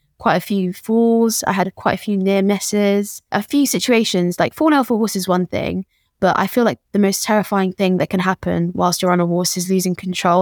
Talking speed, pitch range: 240 wpm, 175-210 Hz